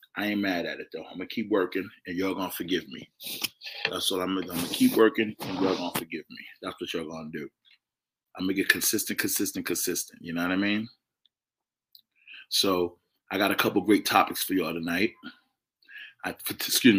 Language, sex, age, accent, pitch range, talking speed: English, male, 20-39, American, 90-100 Hz, 225 wpm